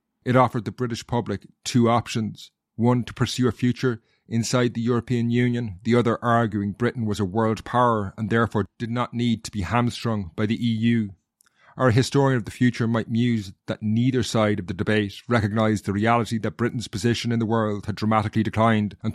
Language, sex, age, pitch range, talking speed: English, male, 30-49, 105-120 Hz, 190 wpm